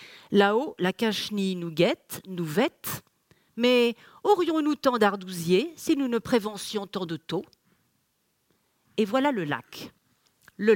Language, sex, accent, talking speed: French, female, French, 130 wpm